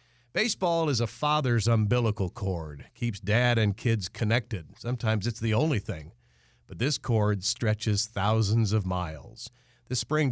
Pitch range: 110-130 Hz